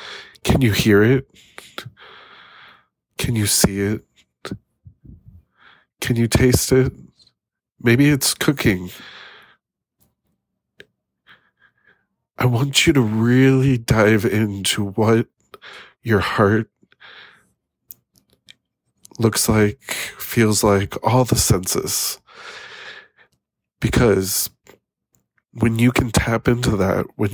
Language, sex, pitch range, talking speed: English, male, 105-125 Hz, 90 wpm